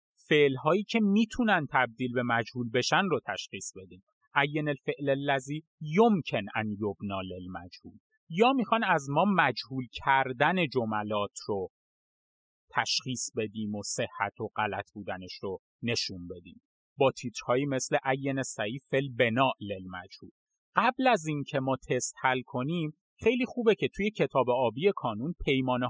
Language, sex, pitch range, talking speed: Persian, male, 115-180 Hz, 140 wpm